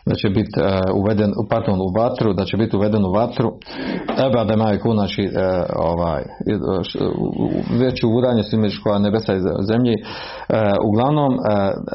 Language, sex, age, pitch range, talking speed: Croatian, male, 40-59, 100-115 Hz, 130 wpm